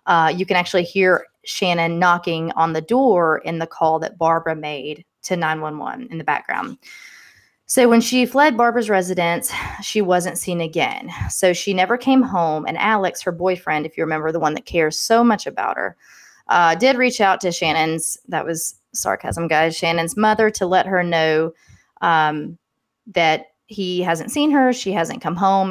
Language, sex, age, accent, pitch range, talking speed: English, female, 20-39, American, 160-200 Hz, 180 wpm